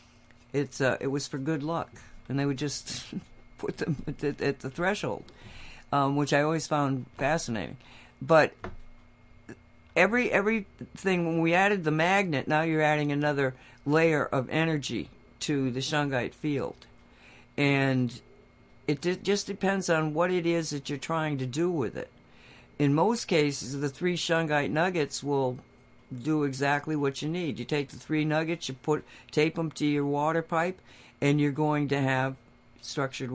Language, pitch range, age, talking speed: English, 125-155 Hz, 60-79, 165 wpm